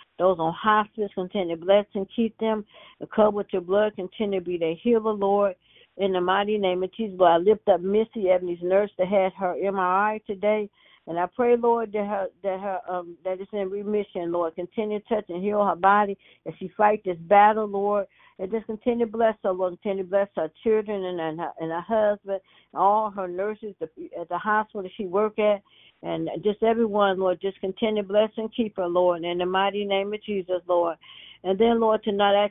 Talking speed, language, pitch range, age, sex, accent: 210 wpm, English, 180-215 Hz, 60-79, female, American